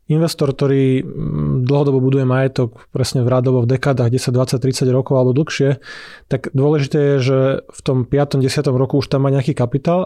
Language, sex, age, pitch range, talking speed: Slovak, male, 20-39, 125-140 Hz, 175 wpm